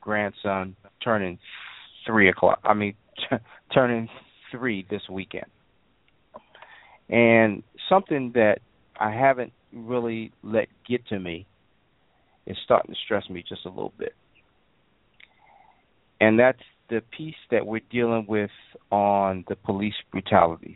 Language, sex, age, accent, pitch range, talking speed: English, male, 40-59, American, 95-110 Hz, 120 wpm